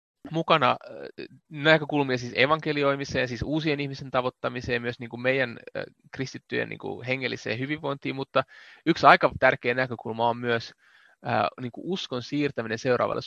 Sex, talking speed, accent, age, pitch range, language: male, 120 wpm, native, 30-49, 120-145 Hz, Finnish